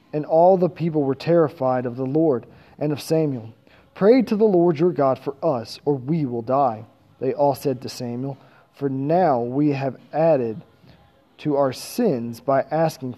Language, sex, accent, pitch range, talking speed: English, male, American, 130-170 Hz, 180 wpm